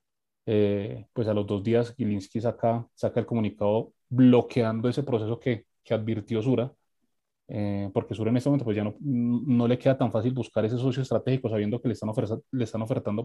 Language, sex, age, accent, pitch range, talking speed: Spanish, male, 30-49, Colombian, 110-125 Hz, 200 wpm